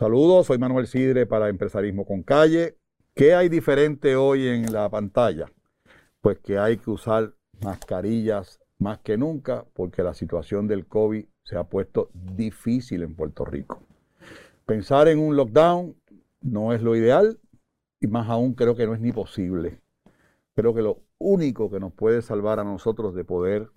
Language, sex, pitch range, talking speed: Spanish, male, 100-140 Hz, 165 wpm